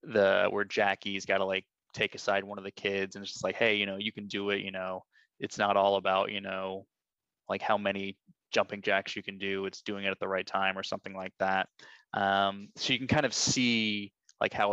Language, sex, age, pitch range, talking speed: English, male, 20-39, 100-110 Hz, 235 wpm